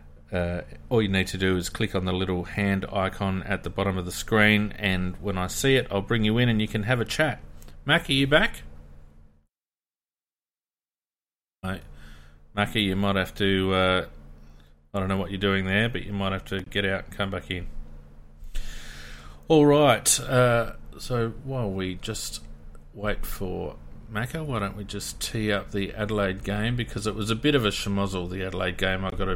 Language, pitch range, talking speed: English, 85-105 Hz, 190 wpm